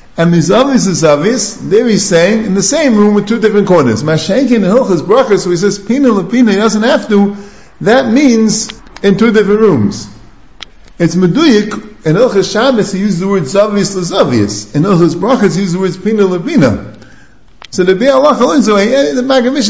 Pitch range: 165-220 Hz